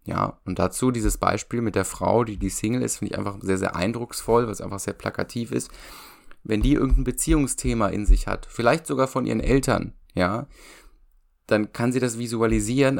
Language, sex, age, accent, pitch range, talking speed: German, male, 20-39, German, 100-120 Hz, 190 wpm